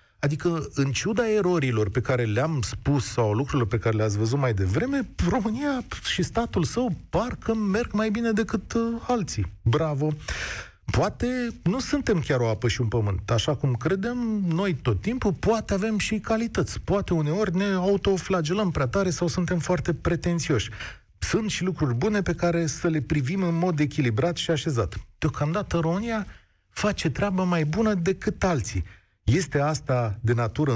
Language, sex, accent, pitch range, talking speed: Romanian, male, native, 120-190 Hz, 160 wpm